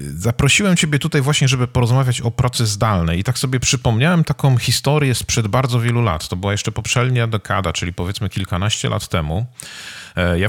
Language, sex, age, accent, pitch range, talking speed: Polish, male, 40-59, native, 95-130 Hz, 170 wpm